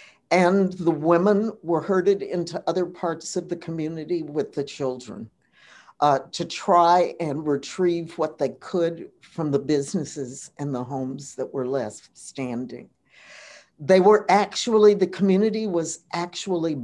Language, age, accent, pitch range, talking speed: English, 60-79, American, 145-185 Hz, 140 wpm